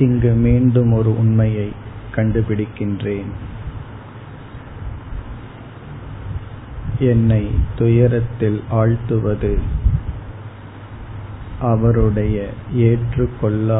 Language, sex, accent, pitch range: Tamil, male, native, 105-115 Hz